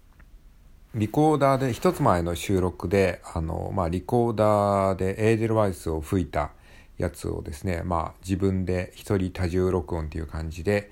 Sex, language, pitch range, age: male, Japanese, 80-100 Hz, 50-69